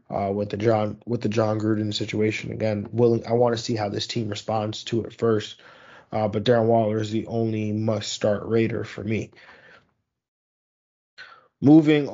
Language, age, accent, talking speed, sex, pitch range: English, 20-39, American, 175 wpm, male, 110-125 Hz